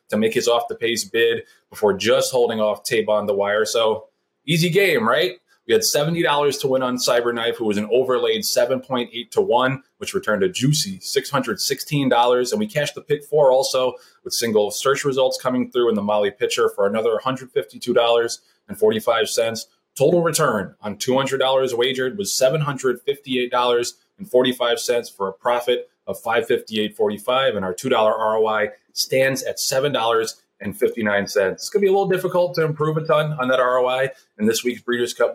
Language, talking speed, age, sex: English, 170 wpm, 20-39, male